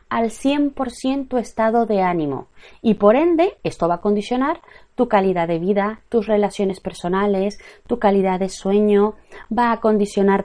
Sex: female